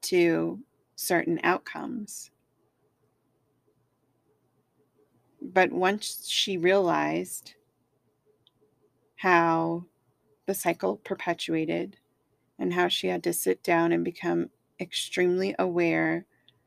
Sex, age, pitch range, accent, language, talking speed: female, 30-49, 135-180 Hz, American, English, 80 wpm